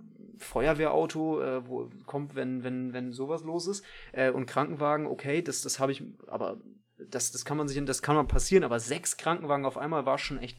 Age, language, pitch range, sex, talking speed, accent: 30-49, German, 130-155 Hz, male, 205 wpm, German